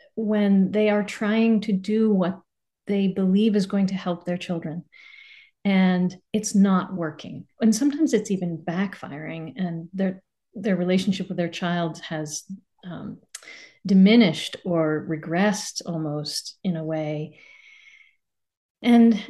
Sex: female